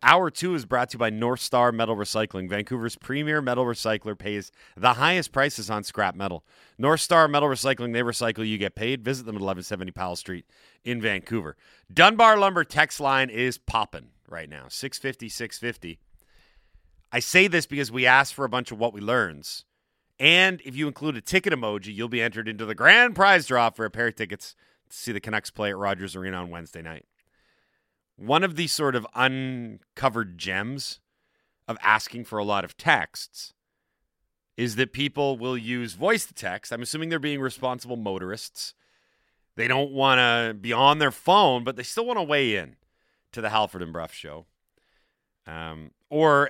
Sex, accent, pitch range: male, American, 105-140 Hz